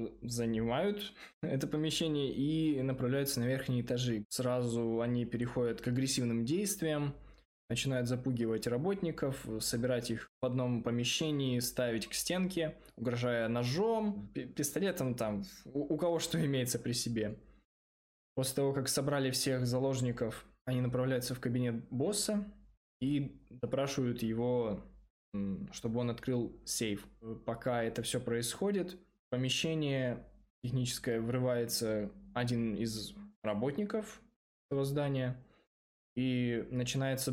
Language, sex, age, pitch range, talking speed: Russian, male, 20-39, 115-135 Hz, 110 wpm